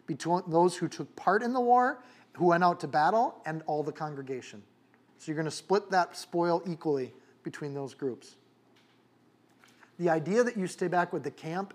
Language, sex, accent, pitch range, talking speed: English, male, American, 145-175 Hz, 185 wpm